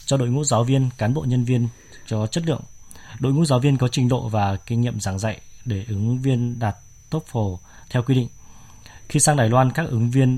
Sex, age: male, 20-39